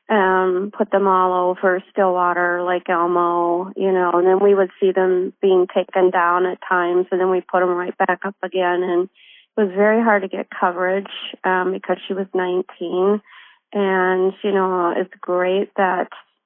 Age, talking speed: 30-49, 180 wpm